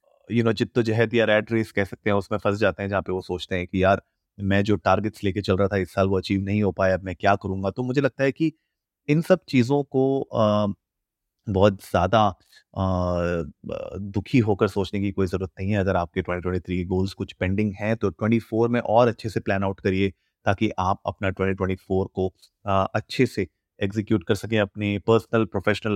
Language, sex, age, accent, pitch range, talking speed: Hindi, male, 30-49, native, 95-115 Hz, 210 wpm